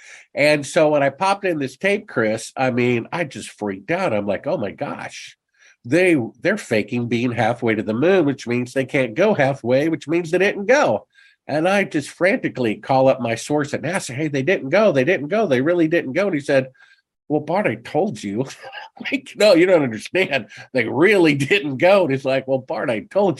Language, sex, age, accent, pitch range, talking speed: English, male, 50-69, American, 115-165 Hz, 215 wpm